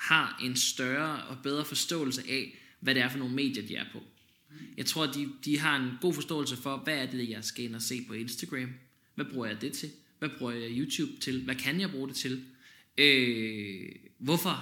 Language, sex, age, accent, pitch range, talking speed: Danish, male, 20-39, native, 120-145 Hz, 215 wpm